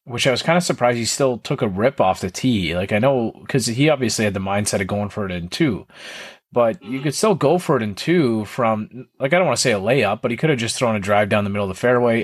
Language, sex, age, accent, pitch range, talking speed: English, male, 30-49, American, 105-125 Hz, 300 wpm